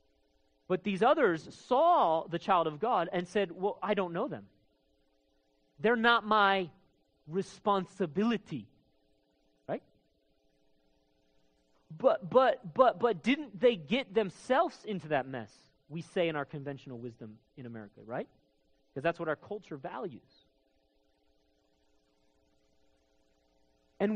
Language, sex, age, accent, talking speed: English, male, 40-59, American, 115 wpm